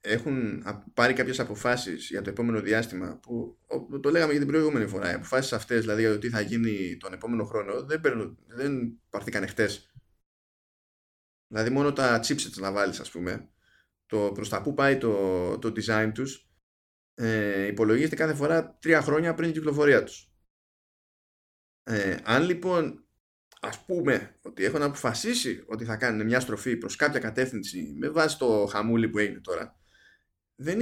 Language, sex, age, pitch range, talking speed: Greek, male, 20-39, 100-135 Hz, 160 wpm